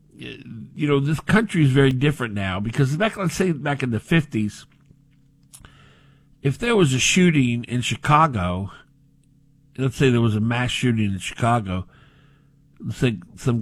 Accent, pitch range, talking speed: American, 105-145 Hz, 155 wpm